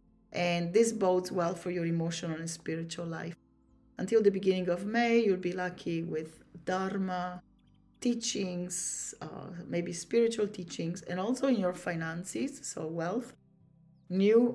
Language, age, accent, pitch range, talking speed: English, 30-49, Italian, 170-210 Hz, 135 wpm